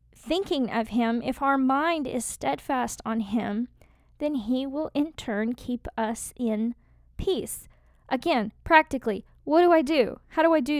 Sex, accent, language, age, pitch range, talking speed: female, American, English, 10-29, 220-270 Hz, 160 wpm